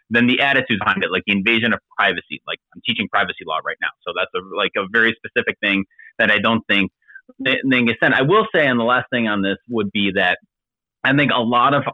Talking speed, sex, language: 235 wpm, male, English